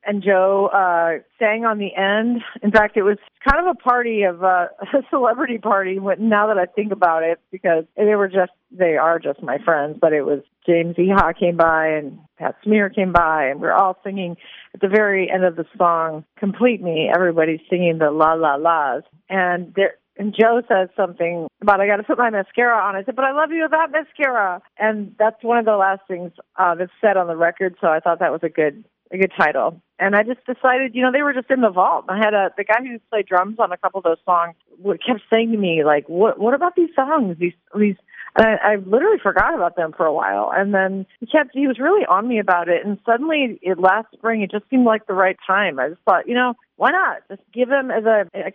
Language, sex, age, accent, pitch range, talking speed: English, female, 40-59, American, 180-230 Hz, 245 wpm